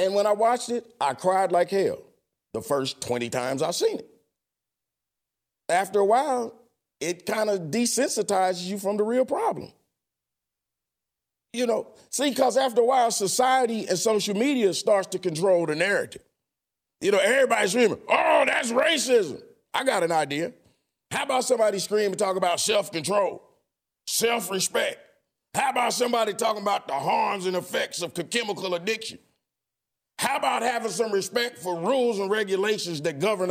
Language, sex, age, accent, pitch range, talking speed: English, male, 40-59, American, 190-255 Hz, 155 wpm